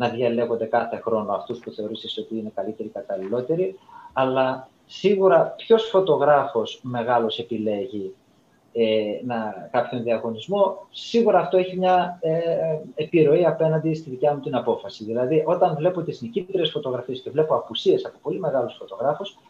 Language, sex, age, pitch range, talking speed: Greek, male, 30-49, 120-180 Hz, 145 wpm